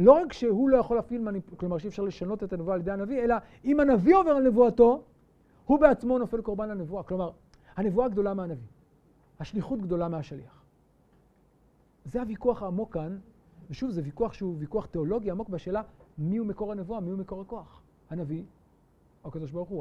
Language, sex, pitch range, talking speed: Hebrew, male, 165-220 Hz, 180 wpm